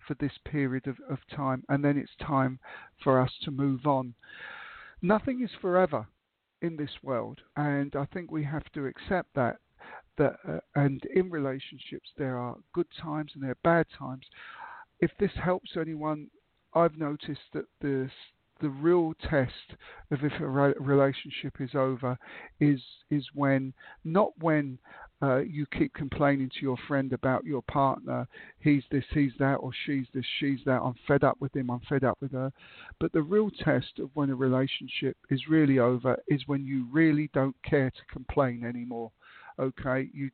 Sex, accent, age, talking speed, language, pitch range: male, British, 50-69, 175 wpm, English, 130-155 Hz